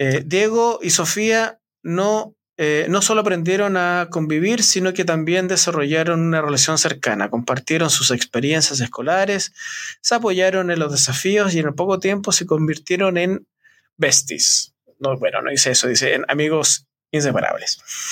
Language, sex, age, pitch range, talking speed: Spanish, male, 20-39, 145-185 Hz, 145 wpm